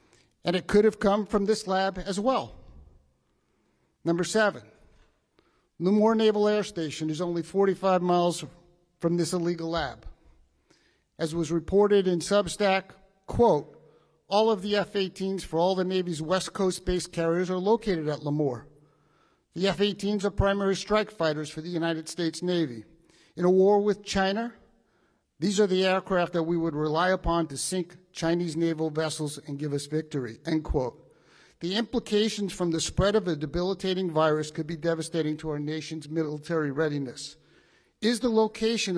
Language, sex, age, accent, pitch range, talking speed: English, male, 50-69, American, 160-195 Hz, 155 wpm